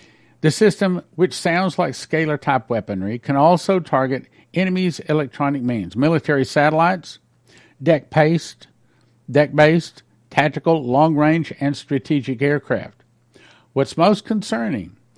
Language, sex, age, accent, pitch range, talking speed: English, male, 60-79, American, 115-155 Hz, 105 wpm